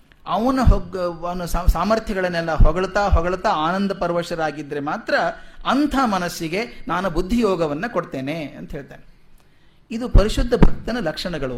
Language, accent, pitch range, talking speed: Kannada, native, 160-225 Hz, 105 wpm